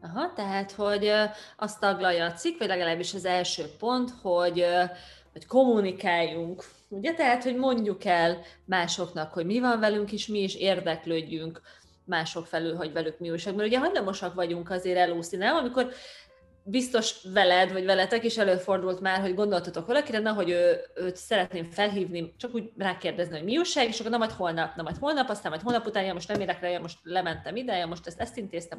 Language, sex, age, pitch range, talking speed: Hungarian, female, 30-49, 175-245 Hz, 185 wpm